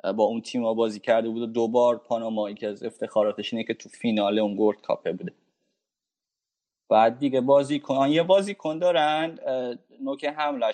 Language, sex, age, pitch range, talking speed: Persian, male, 20-39, 115-155 Hz, 155 wpm